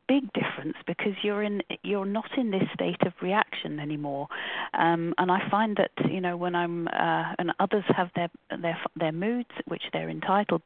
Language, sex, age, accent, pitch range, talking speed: English, female, 40-59, British, 165-195 Hz, 185 wpm